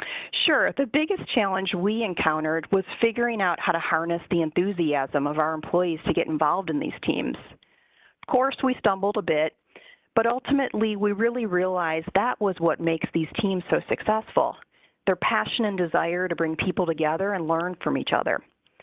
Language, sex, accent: English, female, American